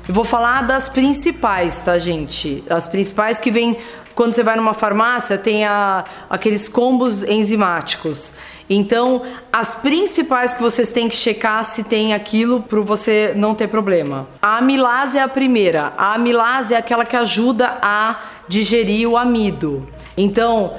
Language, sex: Portuguese, female